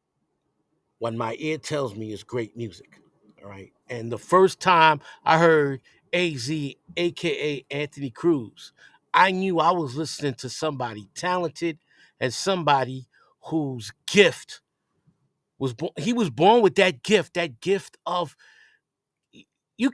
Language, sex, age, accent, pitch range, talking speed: English, male, 50-69, American, 120-165 Hz, 130 wpm